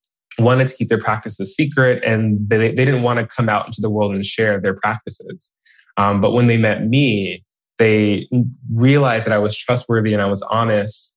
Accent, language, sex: American, English, male